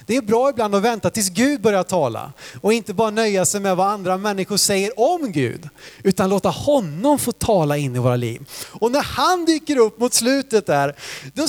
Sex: male